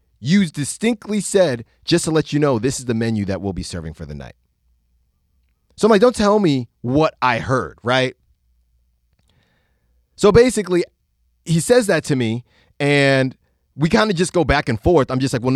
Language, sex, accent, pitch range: English, male, American, 115-180 Hz